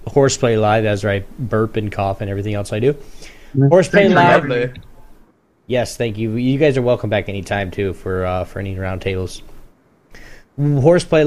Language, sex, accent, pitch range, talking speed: English, male, American, 105-140 Hz, 155 wpm